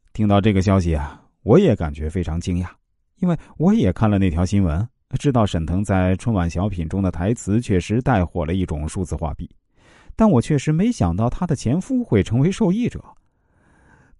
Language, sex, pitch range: Chinese, male, 85-120 Hz